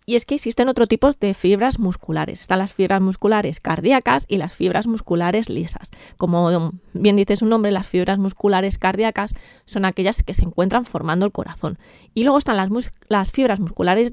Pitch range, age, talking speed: 190-255 Hz, 20-39, 185 wpm